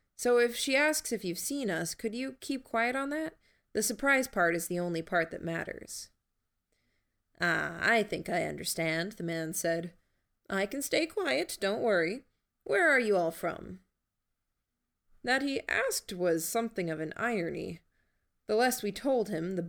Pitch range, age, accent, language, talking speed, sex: 165-230 Hz, 20-39, American, English, 170 wpm, female